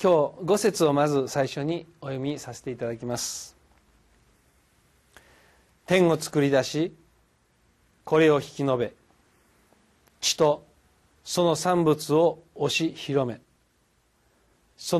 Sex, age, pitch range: male, 40-59, 120-155 Hz